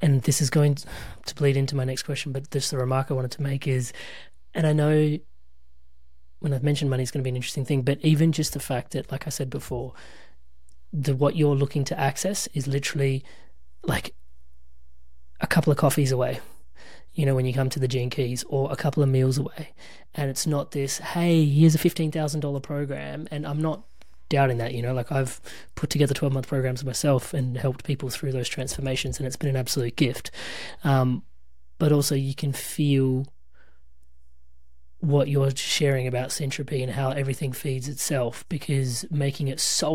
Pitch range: 125-145 Hz